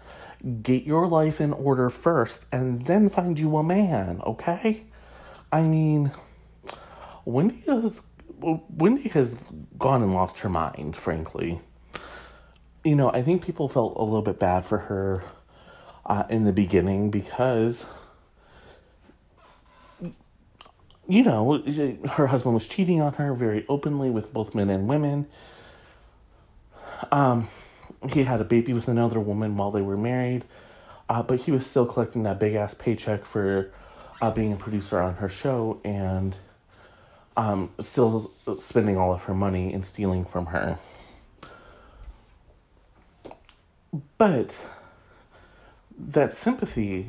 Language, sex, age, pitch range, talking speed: English, male, 40-59, 100-140 Hz, 130 wpm